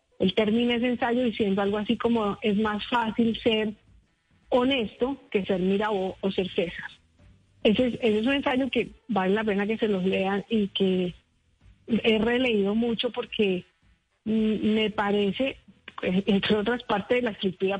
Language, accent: Spanish, Colombian